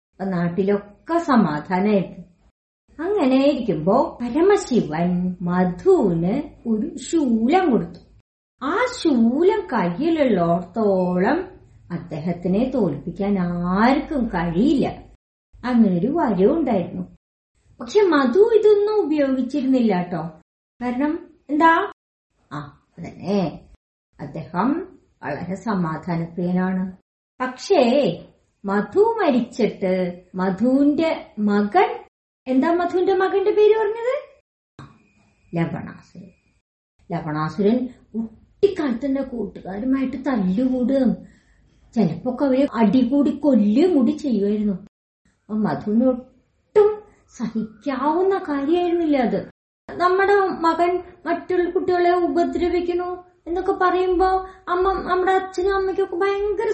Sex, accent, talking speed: male, native, 70 wpm